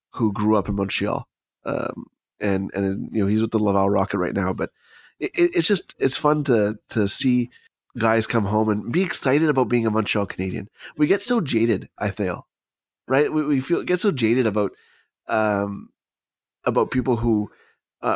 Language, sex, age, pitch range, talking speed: English, male, 20-39, 105-135 Hz, 185 wpm